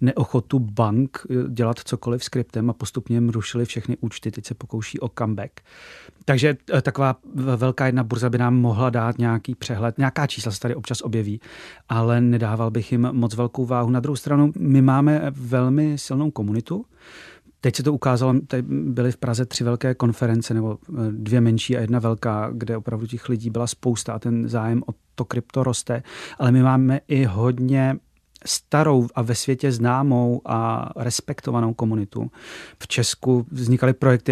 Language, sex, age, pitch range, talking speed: Czech, male, 30-49, 115-130 Hz, 170 wpm